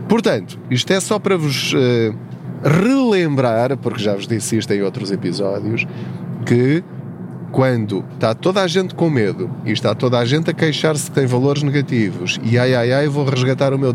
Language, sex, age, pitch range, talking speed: Portuguese, male, 20-39, 115-160 Hz, 180 wpm